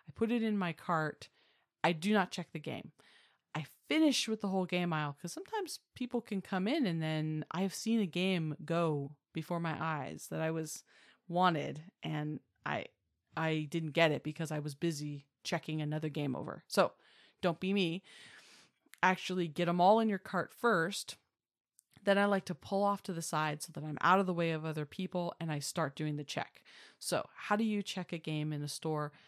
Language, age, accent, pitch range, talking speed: English, 30-49, American, 155-190 Hz, 205 wpm